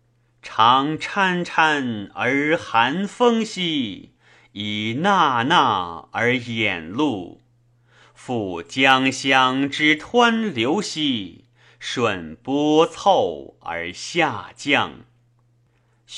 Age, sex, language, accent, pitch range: 30-49, male, Chinese, native, 115-170 Hz